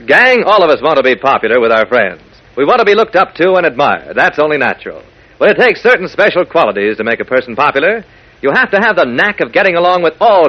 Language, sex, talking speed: English, male, 255 wpm